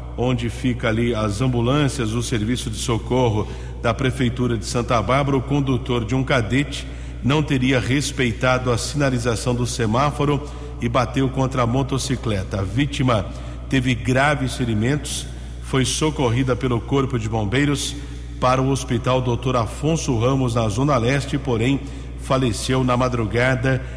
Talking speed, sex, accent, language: 140 wpm, male, Brazilian, English